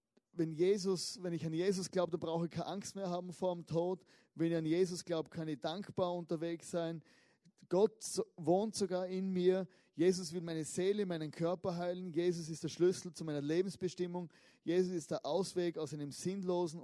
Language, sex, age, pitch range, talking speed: German, male, 20-39, 165-195 Hz, 185 wpm